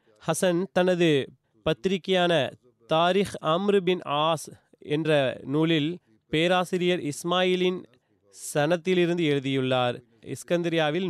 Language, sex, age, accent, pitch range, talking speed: Tamil, male, 30-49, native, 140-175 Hz, 70 wpm